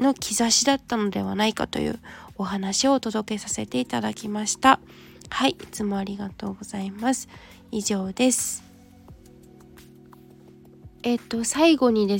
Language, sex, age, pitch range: Japanese, female, 20-39, 205-260 Hz